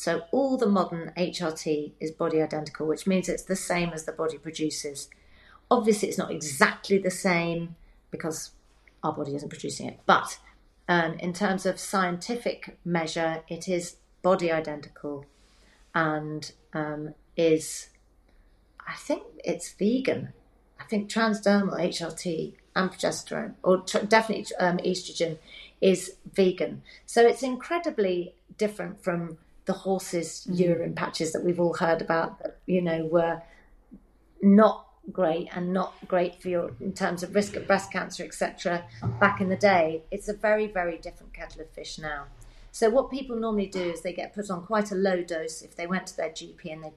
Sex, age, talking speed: female, 40-59, 160 wpm